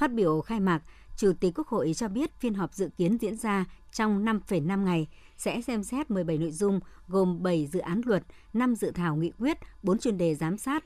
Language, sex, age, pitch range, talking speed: Vietnamese, male, 60-79, 170-220 Hz, 220 wpm